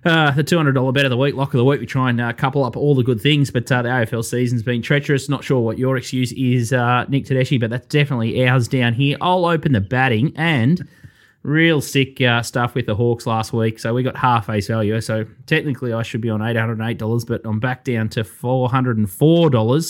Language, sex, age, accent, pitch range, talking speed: English, male, 20-39, Australian, 115-140 Hz, 230 wpm